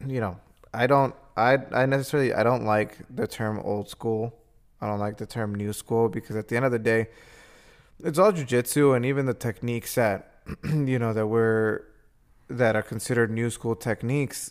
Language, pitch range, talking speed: English, 105-120 Hz, 190 wpm